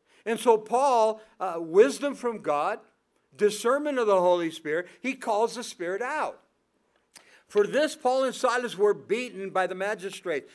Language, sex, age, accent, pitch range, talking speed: English, male, 60-79, American, 190-255 Hz, 155 wpm